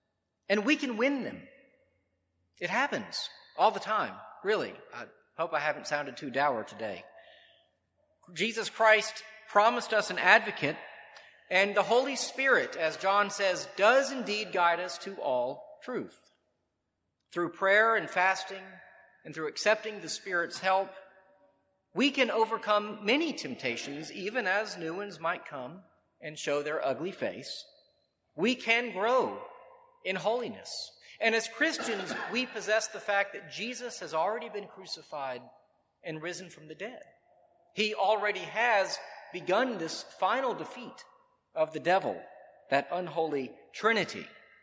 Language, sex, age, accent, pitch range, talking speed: English, male, 40-59, American, 170-240 Hz, 135 wpm